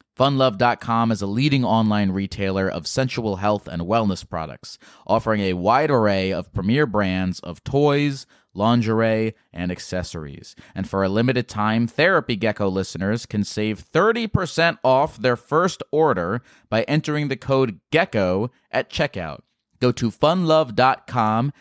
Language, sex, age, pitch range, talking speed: English, male, 30-49, 100-130 Hz, 135 wpm